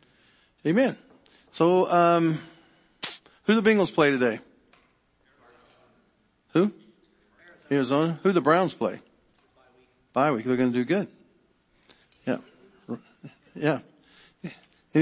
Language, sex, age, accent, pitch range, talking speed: English, male, 40-59, American, 130-210 Hz, 100 wpm